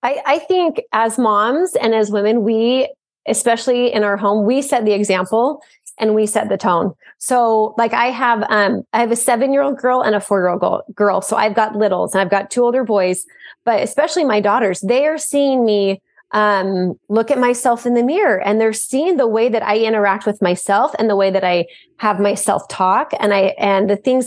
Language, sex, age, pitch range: English, female, 20-39, 210-295 Hz